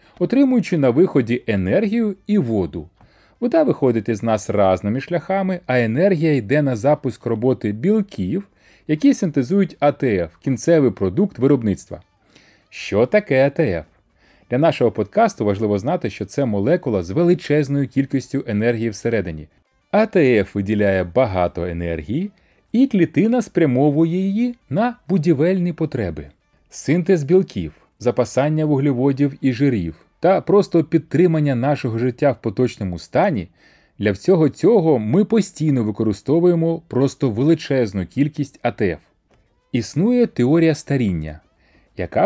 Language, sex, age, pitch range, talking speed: Ukrainian, male, 30-49, 110-175 Hz, 115 wpm